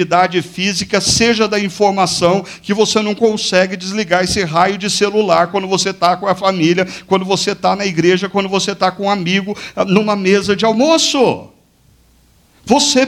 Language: Portuguese